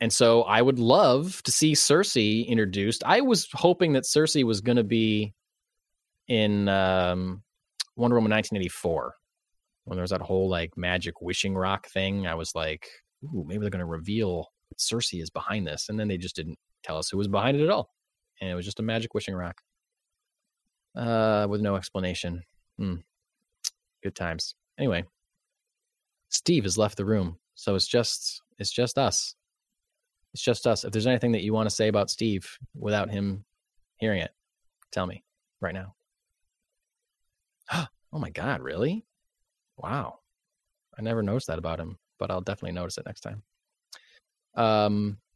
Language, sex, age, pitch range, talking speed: English, male, 20-39, 95-125 Hz, 170 wpm